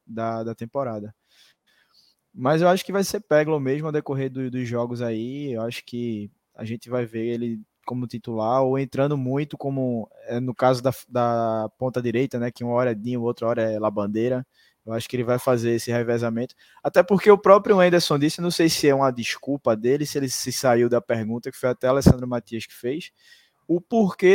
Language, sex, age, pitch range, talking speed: Portuguese, male, 20-39, 120-155 Hz, 205 wpm